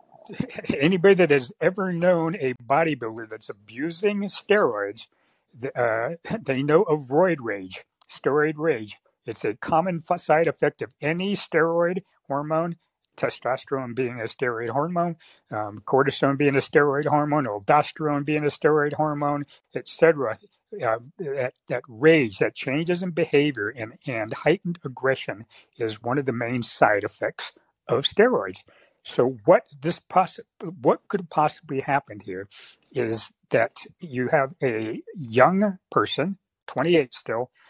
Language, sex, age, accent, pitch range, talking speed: English, male, 60-79, American, 120-165 Hz, 135 wpm